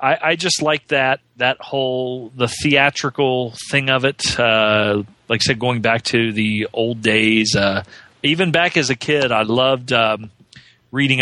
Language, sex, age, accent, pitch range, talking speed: English, male, 40-59, American, 115-155 Hz, 170 wpm